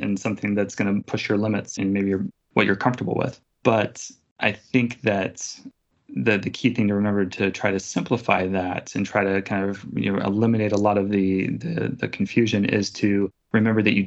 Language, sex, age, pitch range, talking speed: English, male, 20-39, 95-105 Hz, 215 wpm